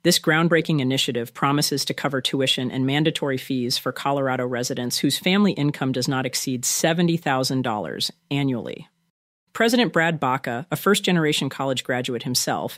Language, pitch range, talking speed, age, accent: English, 125-165 Hz, 135 wpm, 40-59, American